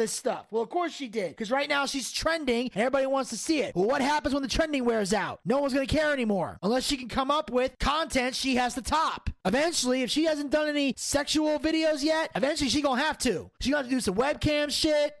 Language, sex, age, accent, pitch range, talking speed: English, male, 20-39, American, 235-305 Hz, 255 wpm